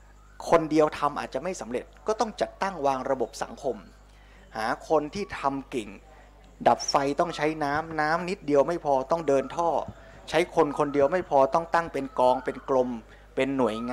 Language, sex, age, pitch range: Thai, male, 20-39, 125-165 Hz